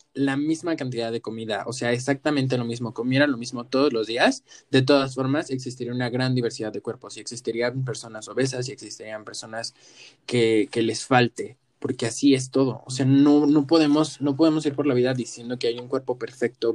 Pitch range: 120-145 Hz